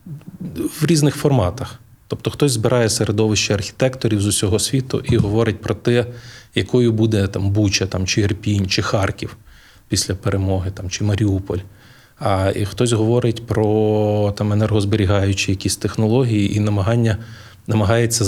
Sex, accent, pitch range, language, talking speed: male, native, 100-120 Hz, Ukrainian, 135 wpm